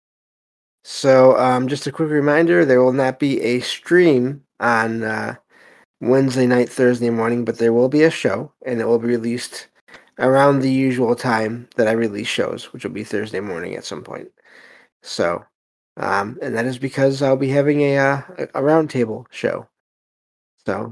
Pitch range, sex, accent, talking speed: 115-140 Hz, male, American, 180 wpm